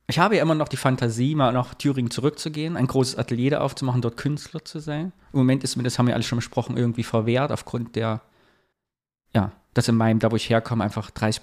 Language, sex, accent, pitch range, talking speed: German, male, German, 115-145 Hz, 230 wpm